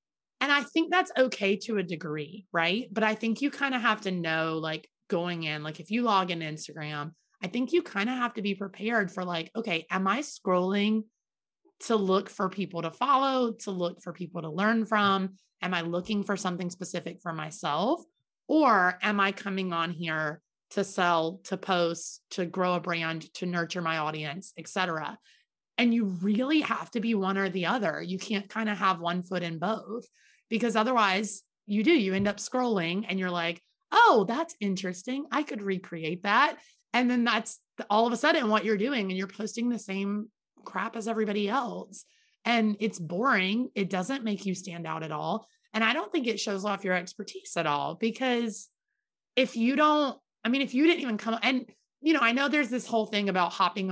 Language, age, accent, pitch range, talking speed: English, 30-49, American, 180-230 Hz, 205 wpm